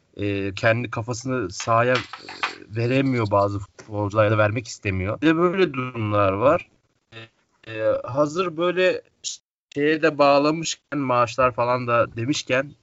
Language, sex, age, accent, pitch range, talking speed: Turkish, male, 30-49, native, 110-135 Hz, 110 wpm